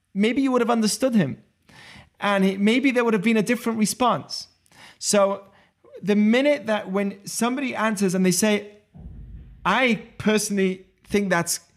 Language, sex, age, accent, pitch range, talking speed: English, male, 30-49, British, 175-220 Hz, 150 wpm